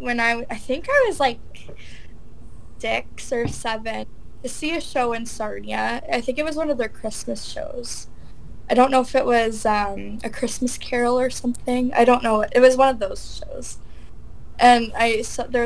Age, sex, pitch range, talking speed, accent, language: 10-29, female, 215-260 Hz, 190 wpm, American, English